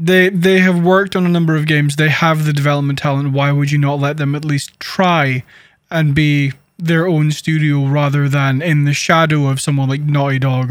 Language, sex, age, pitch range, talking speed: English, male, 20-39, 145-175 Hz, 215 wpm